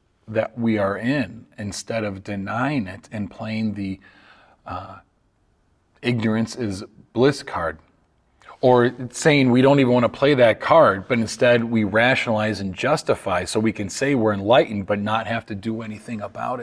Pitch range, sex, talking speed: 105-140 Hz, male, 160 wpm